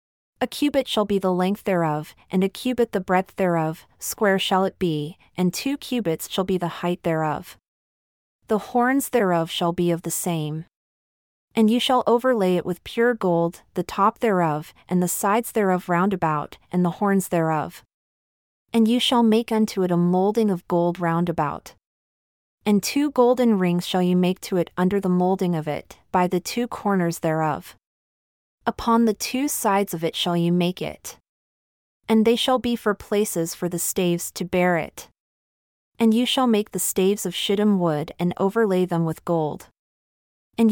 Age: 30-49